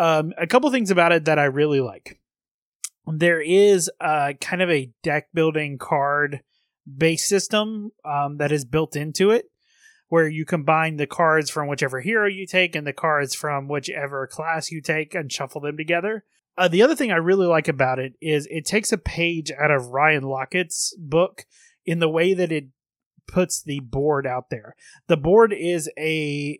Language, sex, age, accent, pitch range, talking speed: English, male, 30-49, American, 145-175 Hz, 185 wpm